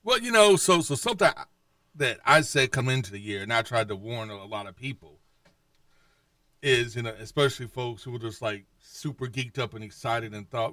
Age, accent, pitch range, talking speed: 40-59, American, 110-145 Hz, 215 wpm